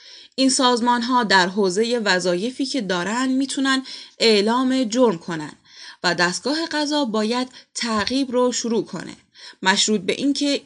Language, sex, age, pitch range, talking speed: Persian, female, 10-29, 195-260 Hz, 130 wpm